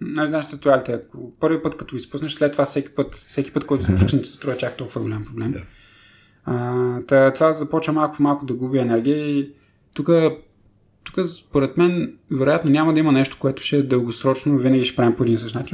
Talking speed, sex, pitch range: 195 wpm, male, 115-145 Hz